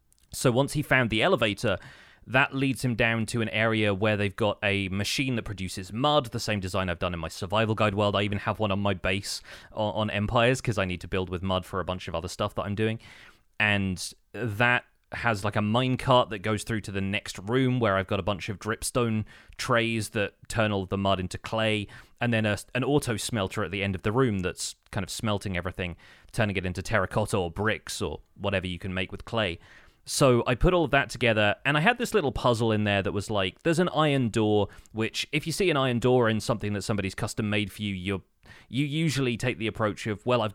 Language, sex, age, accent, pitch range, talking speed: English, male, 30-49, British, 100-120 Hz, 240 wpm